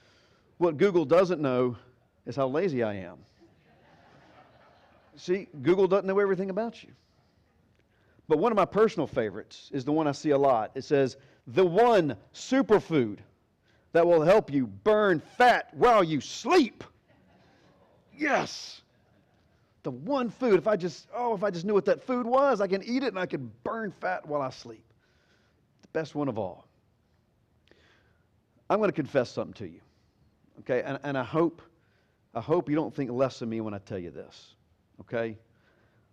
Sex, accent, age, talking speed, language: male, American, 40-59, 170 wpm, English